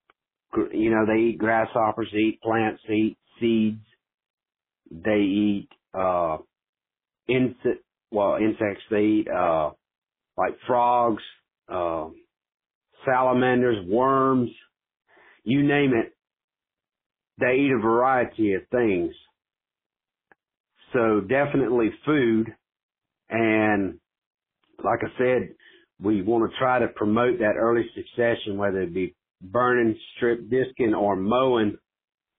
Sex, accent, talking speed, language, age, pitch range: male, American, 105 wpm, English, 50-69, 105-130 Hz